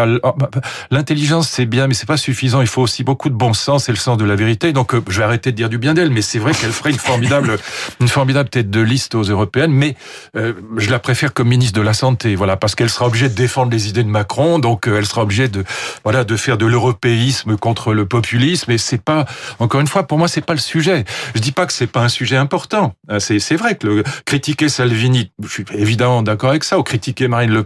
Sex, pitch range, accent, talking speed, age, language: male, 115-145 Hz, French, 255 wpm, 40-59, French